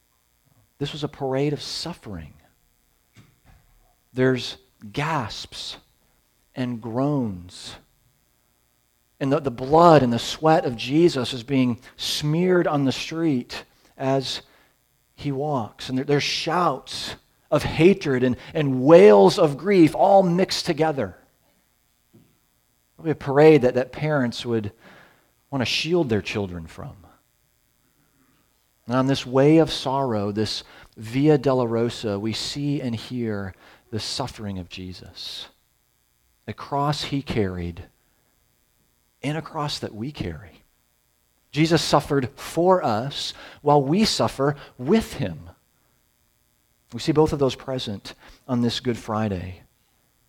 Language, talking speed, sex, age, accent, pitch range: English, 120 wpm, male, 40-59, American, 100-145 Hz